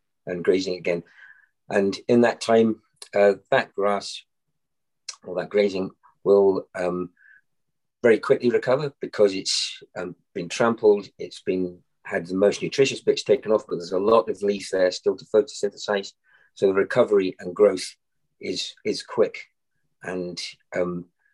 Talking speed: 145 wpm